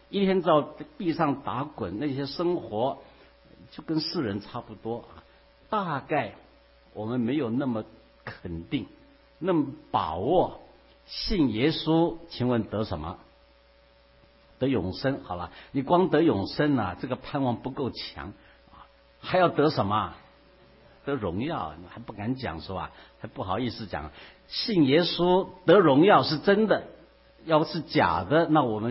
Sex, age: male, 60-79